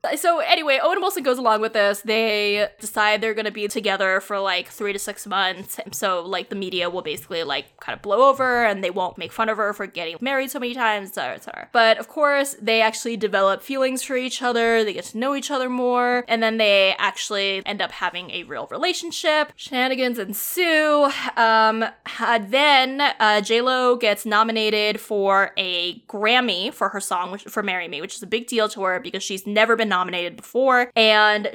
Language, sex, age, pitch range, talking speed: English, female, 20-39, 210-255 Hz, 205 wpm